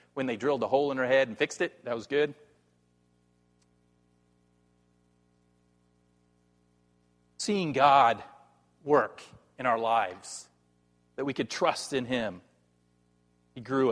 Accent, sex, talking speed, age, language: American, male, 120 wpm, 40-59, English